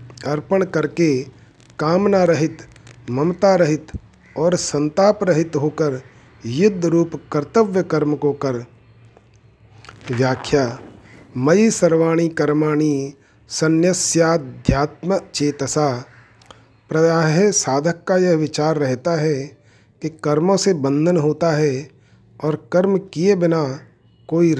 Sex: male